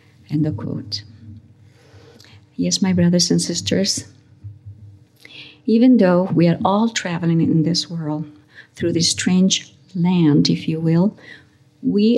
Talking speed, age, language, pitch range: 125 wpm, 50-69, English, 145-185 Hz